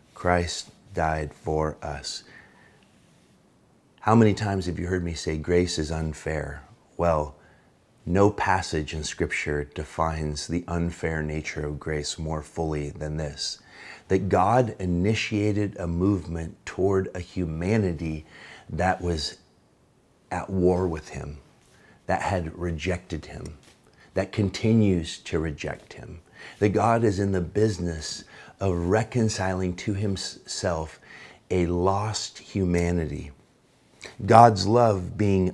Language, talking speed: English, 115 wpm